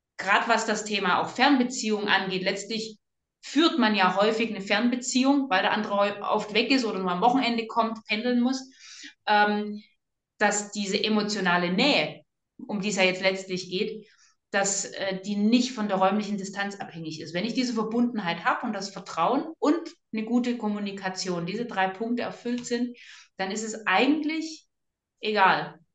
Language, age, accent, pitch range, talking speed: German, 30-49, German, 195-245 Hz, 165 wpm